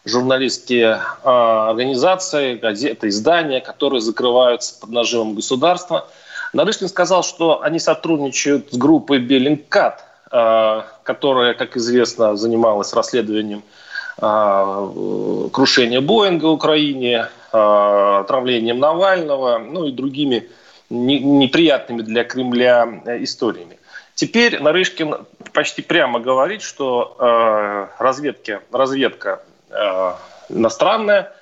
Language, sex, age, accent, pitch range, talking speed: Russian, male, 30-49, native, 120-180 Hz, 85 wpm